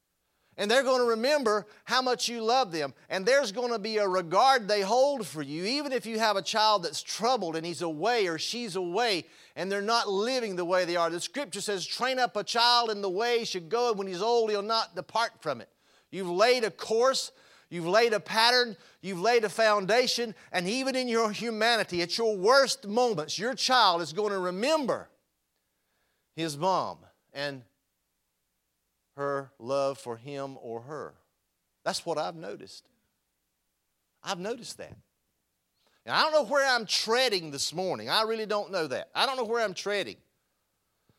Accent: American